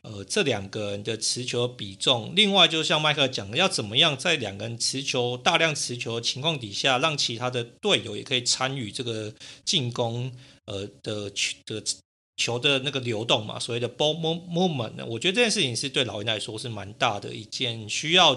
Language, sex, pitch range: Chinese, male, 115-145 Hz